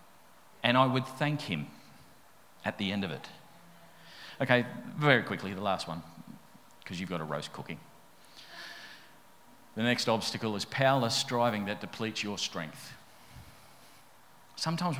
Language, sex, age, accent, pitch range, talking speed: English, male, 40-59, Australian, 95-125 Hz, 130 wpm